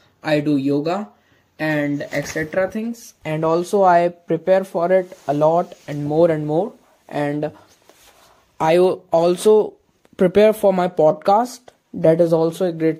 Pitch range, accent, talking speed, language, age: 155-195 Hz, Indian, 140 wpm, English, 20-39